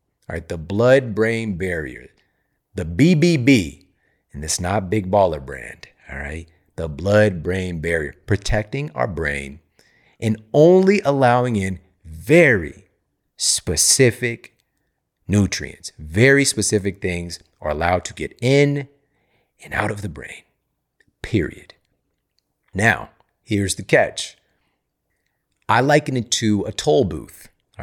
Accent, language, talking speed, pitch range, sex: American, English, 115 wpm, 90-125 Hz, male